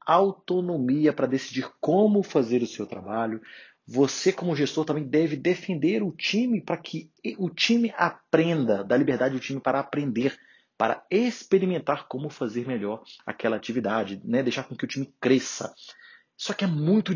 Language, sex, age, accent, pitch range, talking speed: Portuguese, male, 30-49, Brazilian, 115-155 Hz, 155 wpm